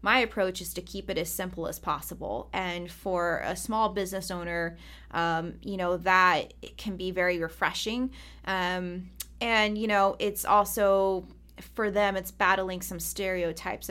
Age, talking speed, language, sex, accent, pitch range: 20-39, 155 wpm, English, female, American, 170-195 Hz